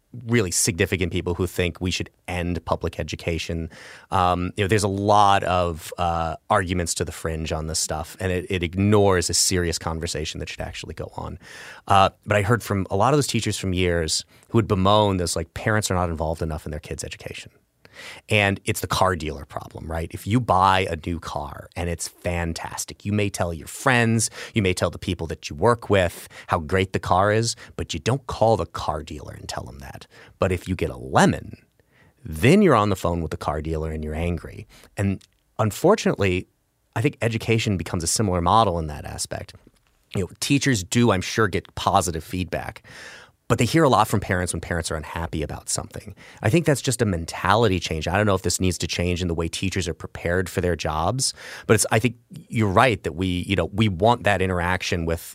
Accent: American